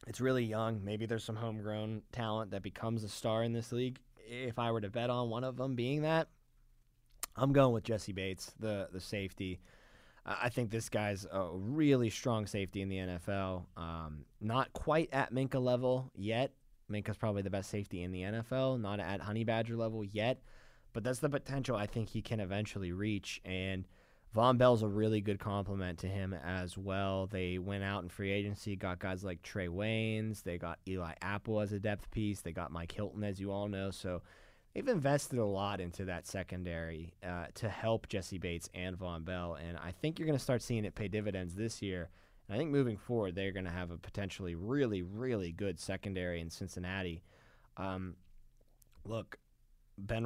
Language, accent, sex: English, American, male